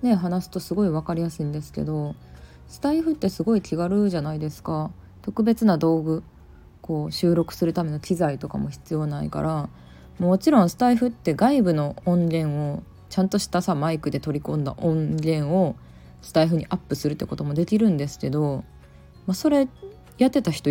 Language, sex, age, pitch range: Japanese, female, 20-39, 135-180 Hz